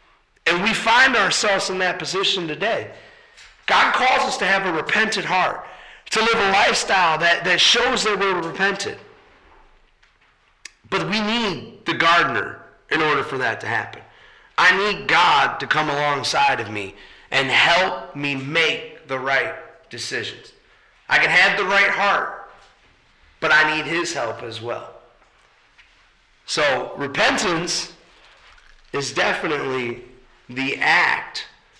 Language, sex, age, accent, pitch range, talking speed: English, male, 30-49, American, 135-200 Hz, 135 wpm